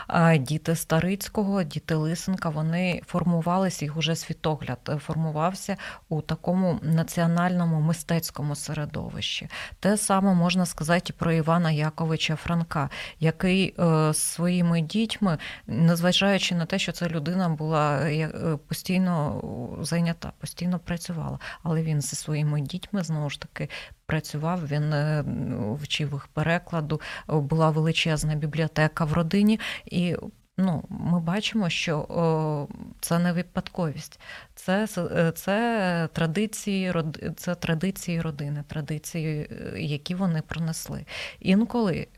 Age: 20-39